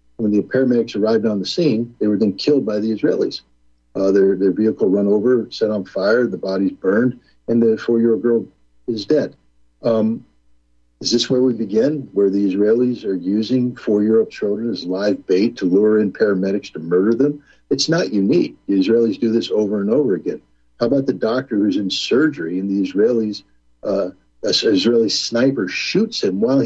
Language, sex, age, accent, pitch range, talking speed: English, male, 60-79, American, 95-120 Hz, 185 wpm